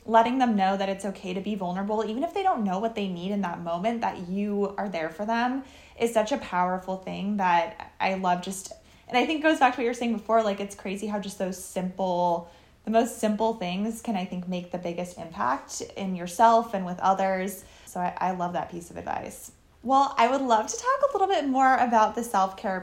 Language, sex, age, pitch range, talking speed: English, female, 20-39, 185-230 Hz, 240 wpm